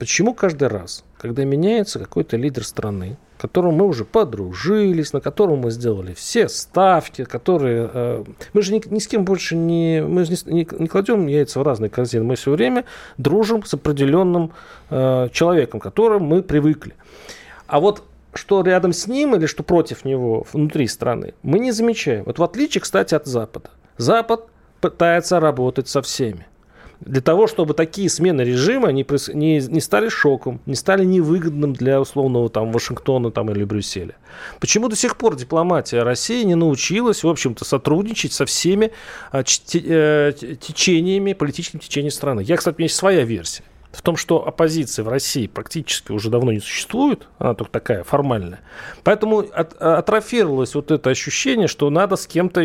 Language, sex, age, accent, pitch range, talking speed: Russian, male, 40-59, native, 130-185 Hz, 165 wpm